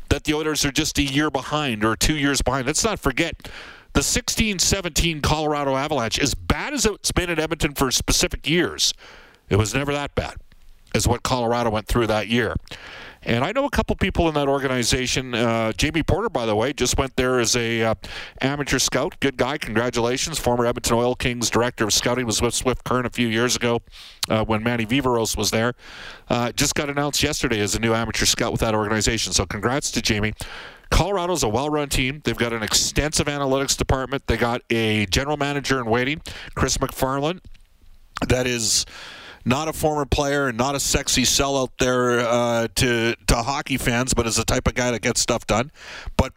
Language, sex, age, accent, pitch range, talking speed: English, male, 50-69, American, 115-145 Hz, 195 wpm